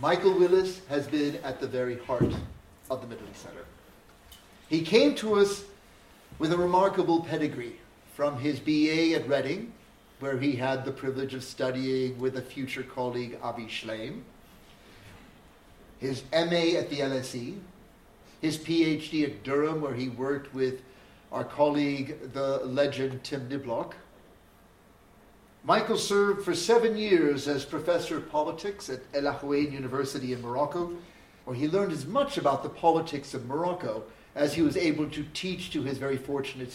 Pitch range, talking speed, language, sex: 130-170 Hz, 150 wpm, English, male